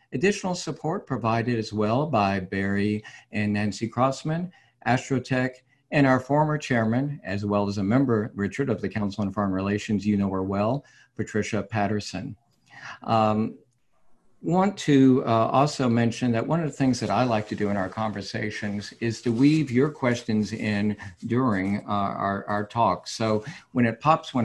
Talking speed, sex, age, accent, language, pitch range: 165 wpm, male, 50-69, American, English, 100-125 Hz